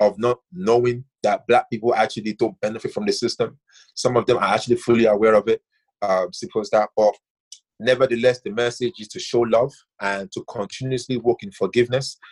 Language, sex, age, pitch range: English, male, 30-49, 110-135 Hz